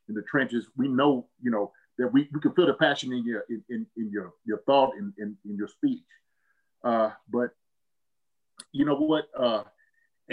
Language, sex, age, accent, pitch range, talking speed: English, male, 30-49, American, 120-165 Hz, 190 wpm